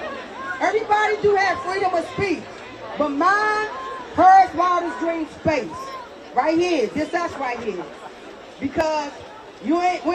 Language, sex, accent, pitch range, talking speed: English, female, American, 275-340 Hz, 130 wpm